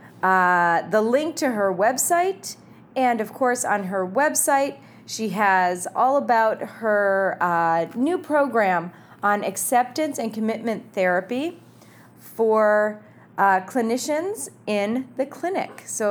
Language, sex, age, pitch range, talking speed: English, female, 30-49, 190-250 Hz, 120 wpm